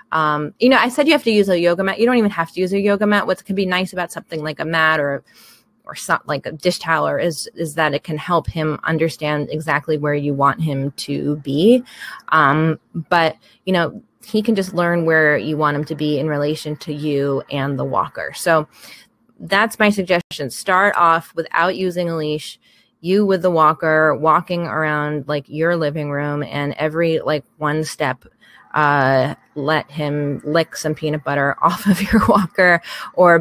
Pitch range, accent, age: 150-175 Hz, American, 20-39